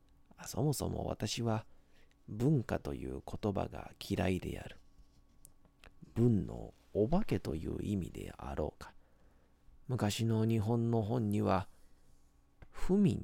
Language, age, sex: Japanese, 40-59, male